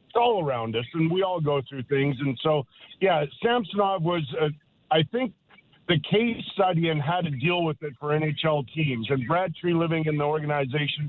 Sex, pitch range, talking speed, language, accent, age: male, 145-170 Hz, 195 wpm, English, American, 50-69